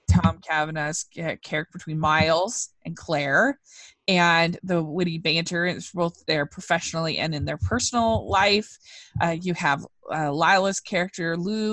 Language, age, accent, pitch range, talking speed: English, 20-39, American, 155-195 Hz, 140 wpm